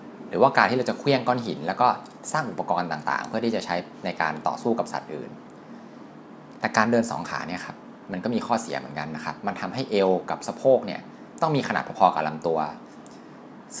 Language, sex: Thai, male